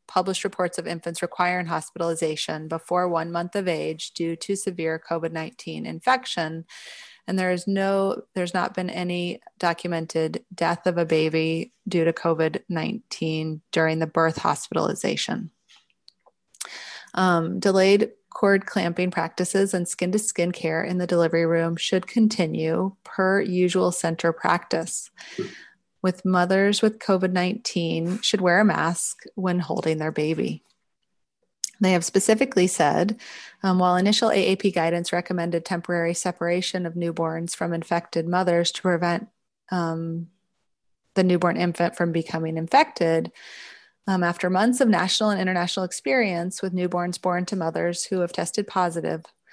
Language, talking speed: English, 130 wpm